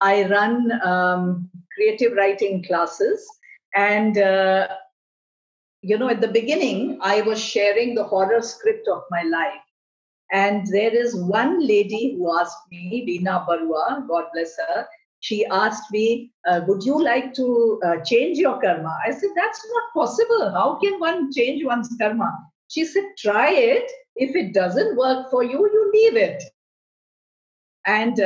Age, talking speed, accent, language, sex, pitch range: 50-69, 155 wpm, Indian, English, female, 190-290 Hz